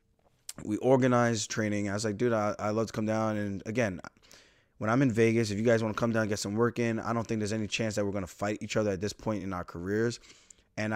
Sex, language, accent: male, English, American